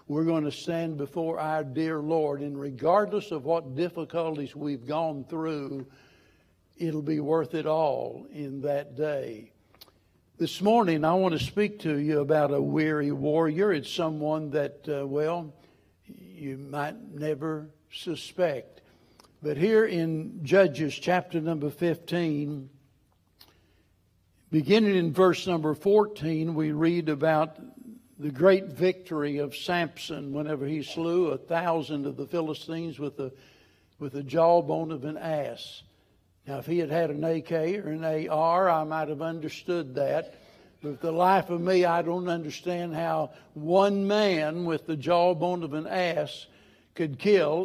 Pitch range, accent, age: 145-175 Hz, American, 60-79